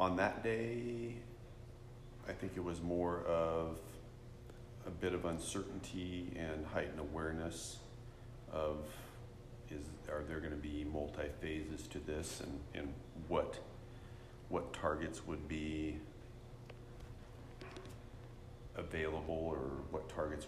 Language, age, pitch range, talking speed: English, 40-59, 75-120 Hz, 110 wpm